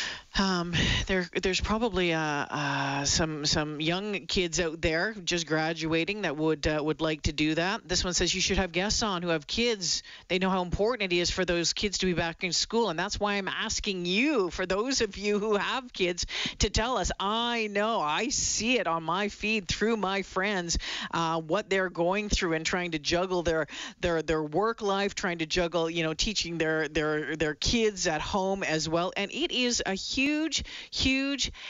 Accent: American